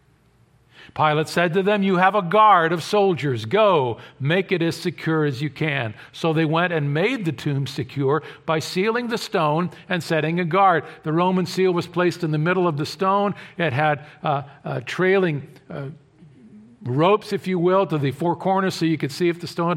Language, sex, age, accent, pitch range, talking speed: English, male, 50-69, American, 140-180 Hz, 200 wpm